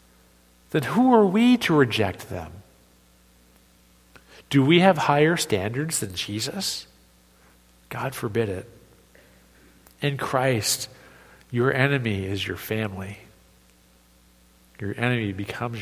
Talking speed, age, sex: 100 wpm, 50-69, male